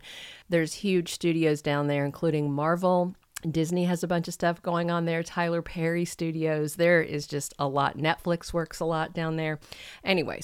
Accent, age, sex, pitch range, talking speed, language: American, 40-59, female, 155-185 Hz, 180 wpm, English